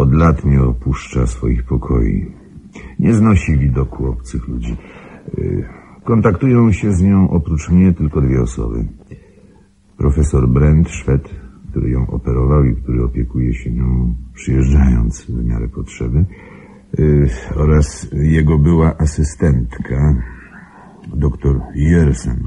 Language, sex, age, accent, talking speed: Polish, male, 60-79, native, 110 wpm